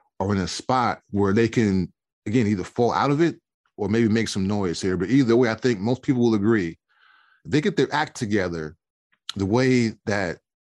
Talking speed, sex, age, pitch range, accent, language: 200 wpm, male, 20-39, 100-130 Hz, American, English